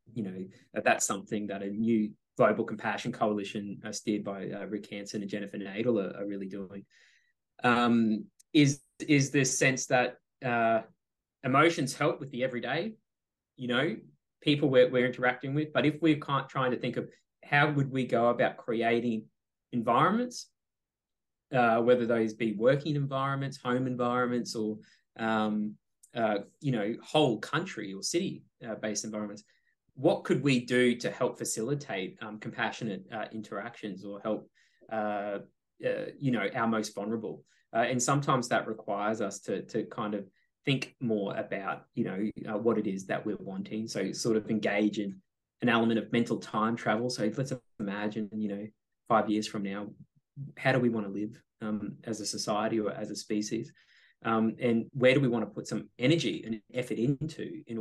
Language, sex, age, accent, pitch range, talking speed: English, male, 20-39, Australian, 105-130 Hz, 170 wpm